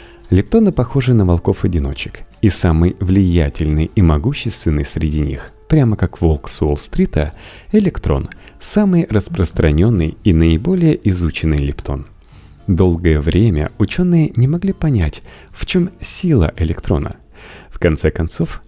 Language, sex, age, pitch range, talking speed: Russian, male, 30-49, 80-120 Hz, 115 wpm